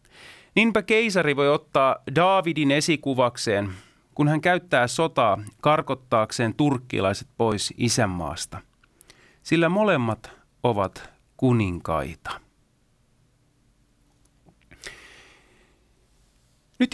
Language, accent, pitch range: Finnish, native, 115-170 Hz